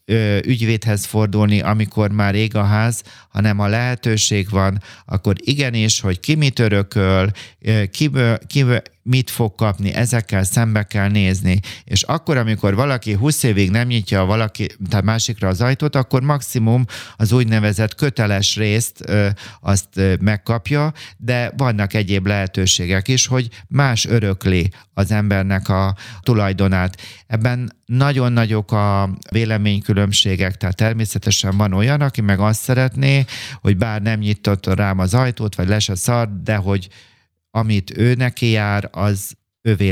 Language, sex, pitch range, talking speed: Hungarian, male, 100-120 Hz, 135 wpm